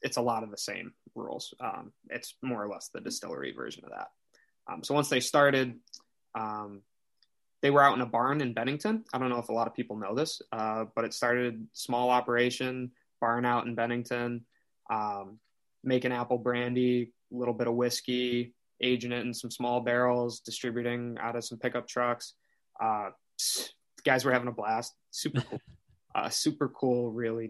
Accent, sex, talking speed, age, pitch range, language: American, male, 185 wpm, 20-39, 115-125 Hz, English